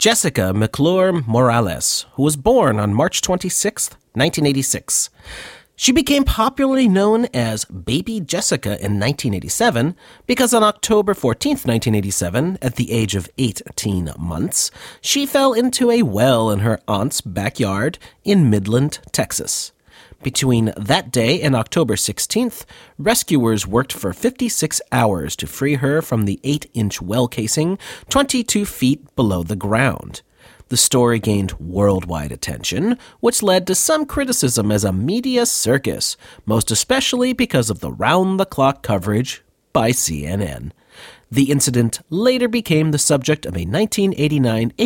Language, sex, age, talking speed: English, male, 40-59, 130 wpm